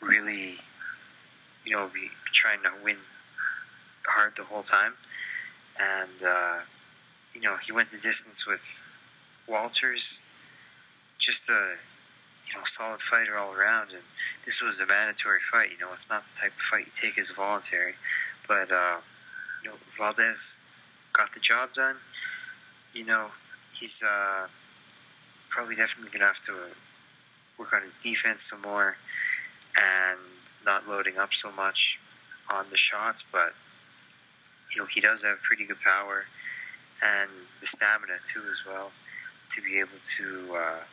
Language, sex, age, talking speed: English, male, 20-39, 150 wpm